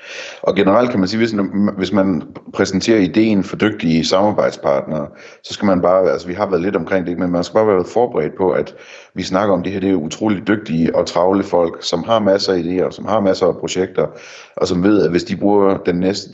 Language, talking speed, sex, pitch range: Danish, 230 wpm, male, 80-100 Hz